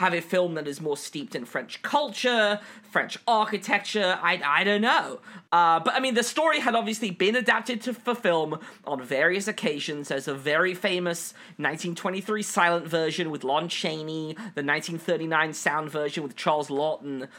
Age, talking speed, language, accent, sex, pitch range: 20-39, 175 wpm, English, British, male, 155-205 Hz